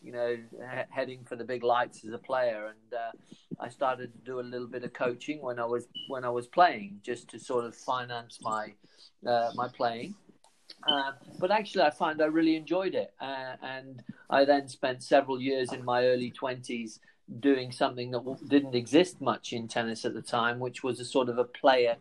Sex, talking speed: male, 205 wpm